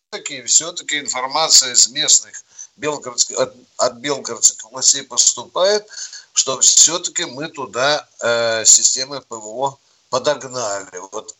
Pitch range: 120-160 Hz